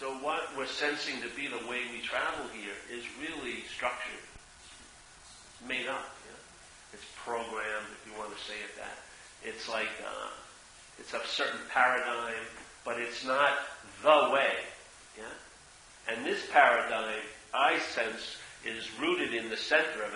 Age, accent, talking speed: 50-69, American, 150 wpm